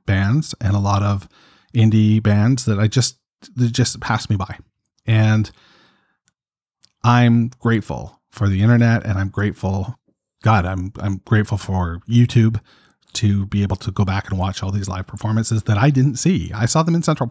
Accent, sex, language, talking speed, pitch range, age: American, male, English, 175 wpm, 95-120 Hz, 40-59